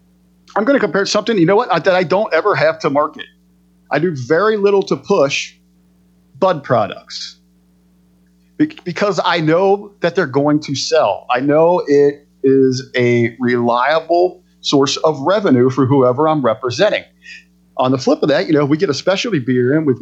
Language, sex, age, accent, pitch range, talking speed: English, male, 40-59, American, 120-190 Hz, 180 wpm